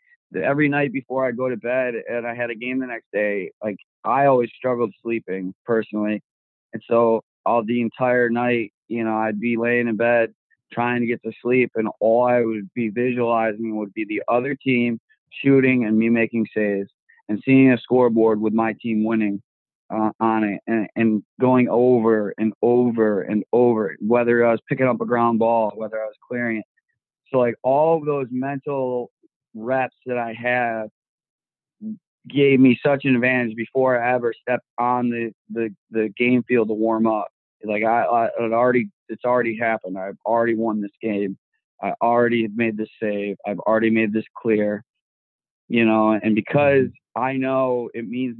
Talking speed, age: 185 wpm, 20-39